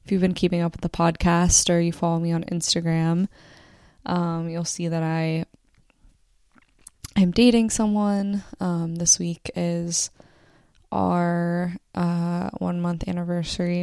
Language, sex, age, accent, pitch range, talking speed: English, female, 20-39, American, 170-180 Hz, 135 wpm